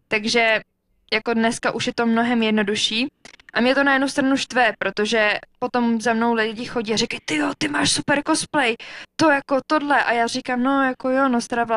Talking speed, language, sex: 205 wpm, Czech, female